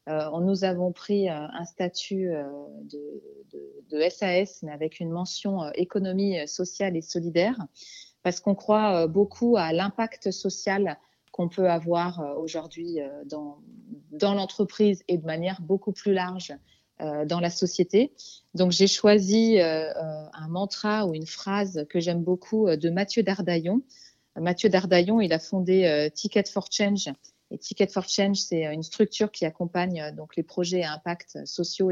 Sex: female